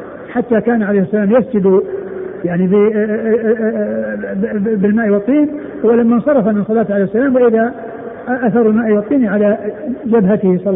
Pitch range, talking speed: 185-230 Hz, 125 wpm